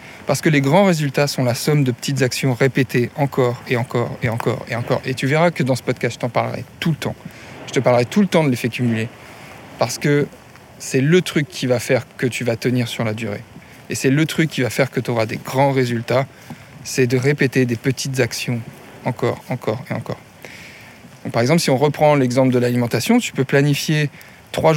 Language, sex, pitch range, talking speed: French, male, 125-150 Hz, 220 wpm